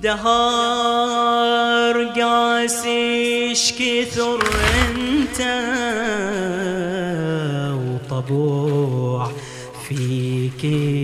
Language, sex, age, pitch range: English, male, 30-49, 145-235 Hz